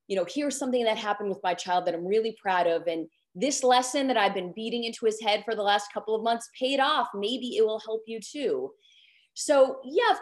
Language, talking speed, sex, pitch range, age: English, 240 wpm, female, 185-260 Hz, 20-39